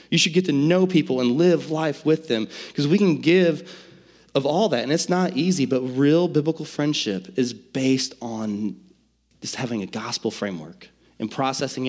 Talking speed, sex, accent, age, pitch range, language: 180 wpm, male, American, 30-49, 125-160 Hz, English